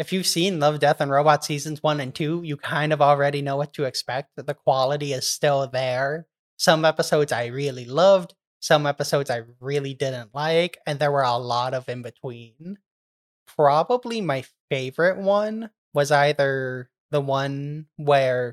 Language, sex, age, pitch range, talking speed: English, male, 20-39, 135-155 Hz, 170 wpm